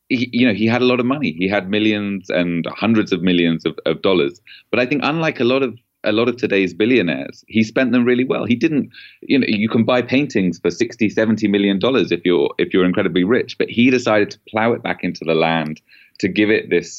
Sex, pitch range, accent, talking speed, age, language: male, 85-110 Hz, British, 245 wpm, 30-49, English